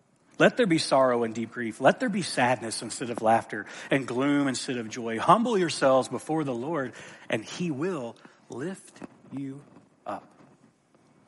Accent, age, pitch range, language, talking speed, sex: American, 40-59, 125-165 Hz, English, 160 wpm, male